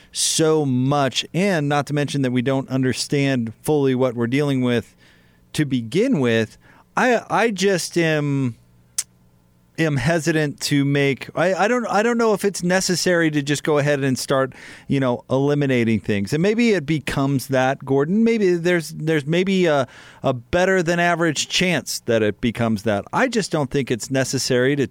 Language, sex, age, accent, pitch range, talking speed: English, male, 40-59, American, 125-155 Hz, 175 wpm